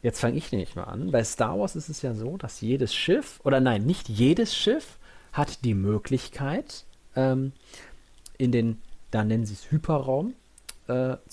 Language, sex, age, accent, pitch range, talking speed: German, male, 40-59, German, 110-135 Hz, 175 wpm